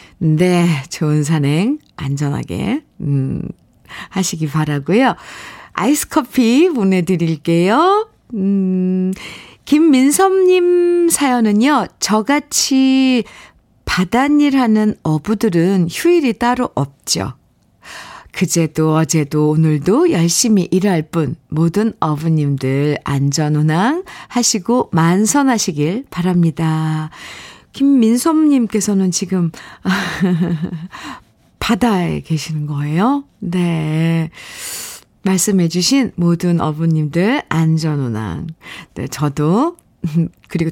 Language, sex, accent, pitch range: Korean, female, native, 160-235 Hz